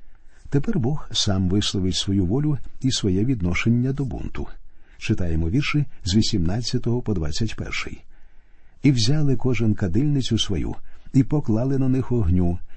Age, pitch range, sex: 50-69, 95-130 Hz, male